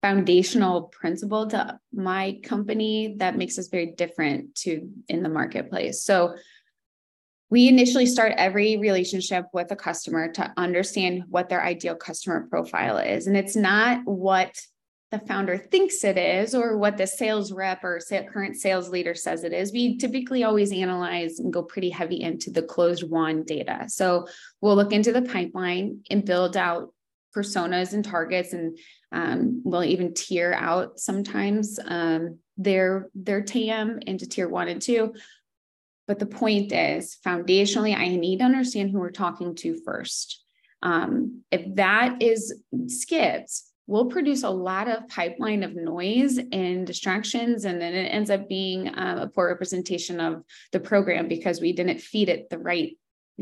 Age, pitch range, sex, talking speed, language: 20-39, 180-220 Hz, female, 160 wpm, English